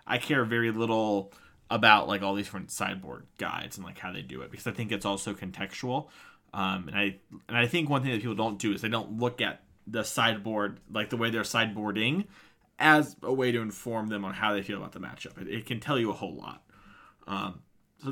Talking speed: 230 wpm